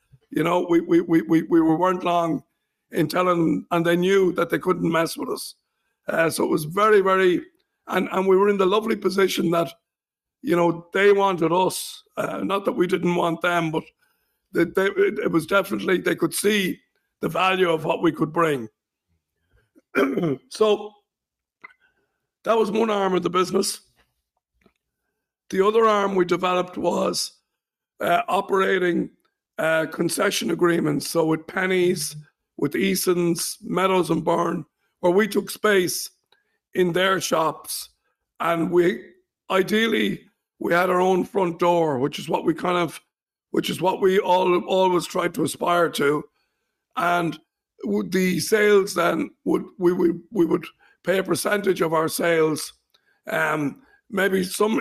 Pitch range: 170-200 Hz